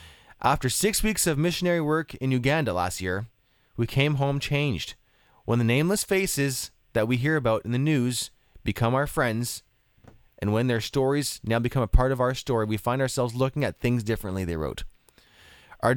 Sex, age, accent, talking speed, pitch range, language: male, 30-49, American, 185 wpm, 110-145 Hz, English